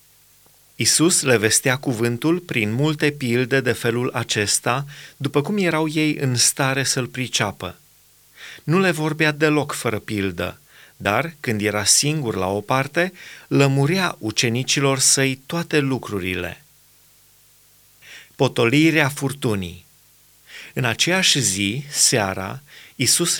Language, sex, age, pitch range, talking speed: Romanian, male, 30-49, 115-150 Hz, 110 wpm